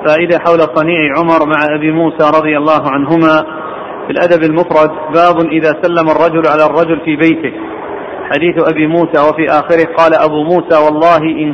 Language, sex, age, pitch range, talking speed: Arabic, male, 40-59, 155-175 Hz, 160 wpm